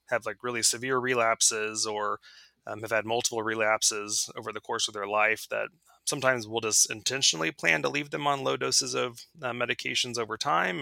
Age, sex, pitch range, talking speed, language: 20-39, male, 110-125 Hz, 190 wpm, English